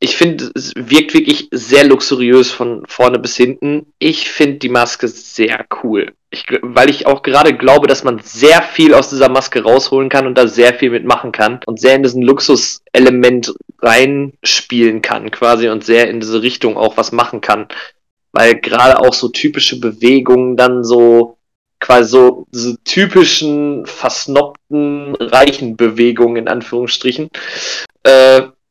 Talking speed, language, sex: 155 wpm, German, male